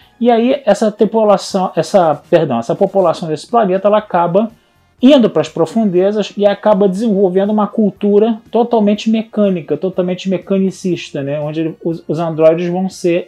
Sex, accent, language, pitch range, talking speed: male, Brazilian, Portuguese, 160-215 Hz, 140 wpm